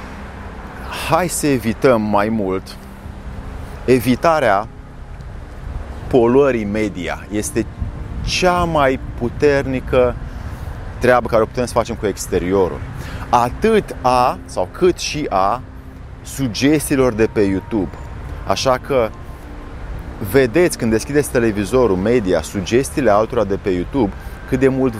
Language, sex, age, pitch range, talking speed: Romanian, male, 30-49, 105-150 Hz, 110 wpm